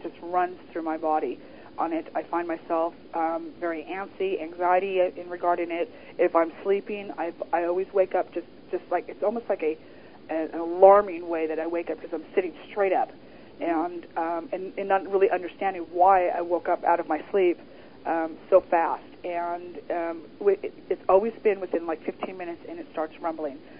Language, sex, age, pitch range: Japanese, female, 40-59, 170-250 Hz